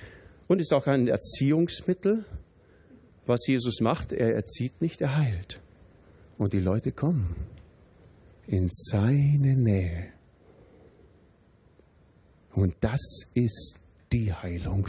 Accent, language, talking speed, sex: German, German, 100 wpm, male